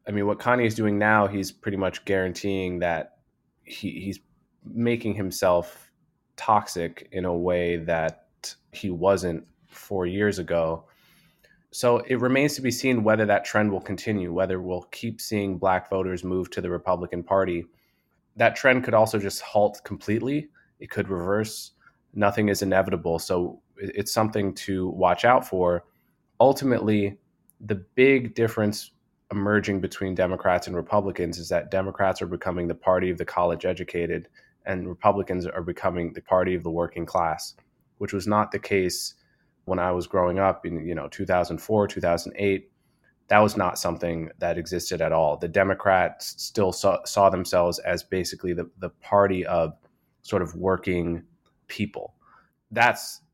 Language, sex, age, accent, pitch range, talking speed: English, male, 20-39, American, 90-105 Hz, 155 wpm